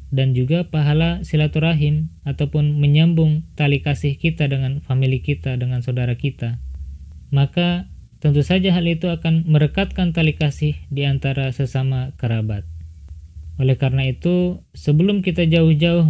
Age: 20-39